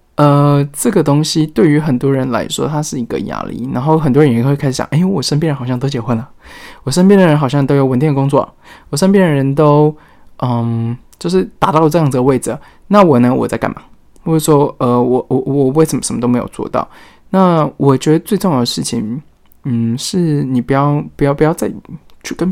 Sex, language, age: male, Chinese, 20-39